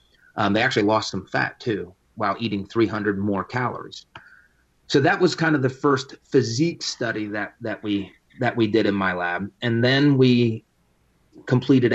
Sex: male